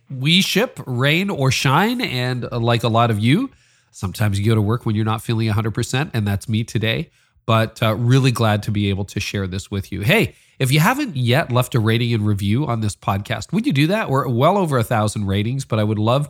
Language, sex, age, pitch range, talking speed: English, male, 40-59, 105-130 Hz, 235 wpm